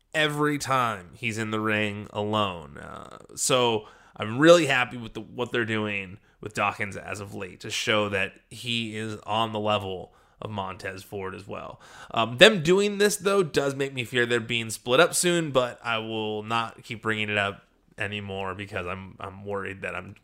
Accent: American